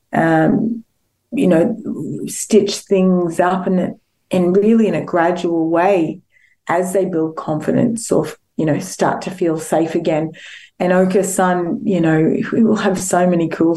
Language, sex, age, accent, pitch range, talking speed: English, female, 30-49, Australian, 165-190 Hz, 160 wpm